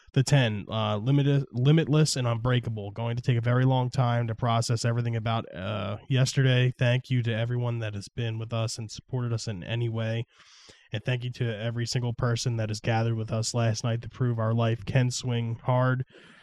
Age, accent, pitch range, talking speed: 20-39, American, 110-130 Hz, 205 wpm